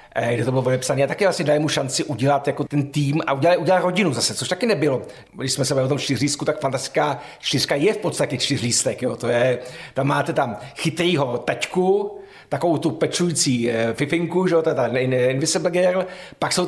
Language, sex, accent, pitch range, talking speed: Czech, male, native, 130-165 Hz, 185 wpm